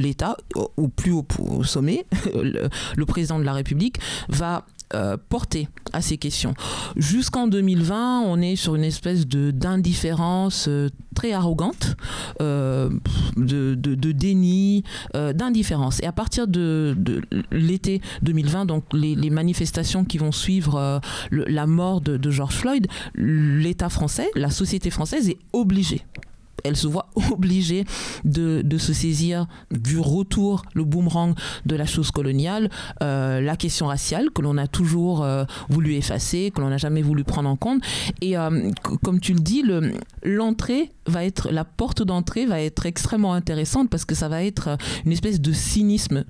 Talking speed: 160 wpm